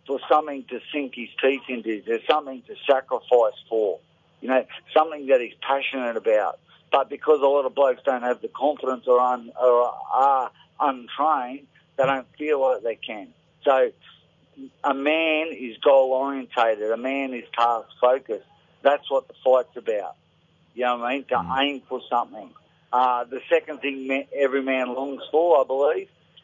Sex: male